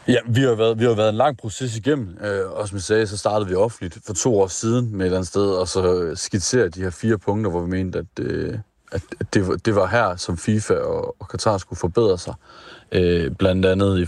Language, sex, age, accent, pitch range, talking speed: Danish, male, 30-49, native, 90-110 Hz, 245 wpm